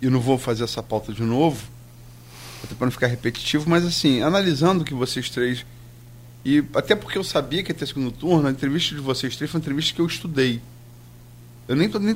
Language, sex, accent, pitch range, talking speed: Portuguese, male, Brazilian, 120-160 Hz, 215 wpm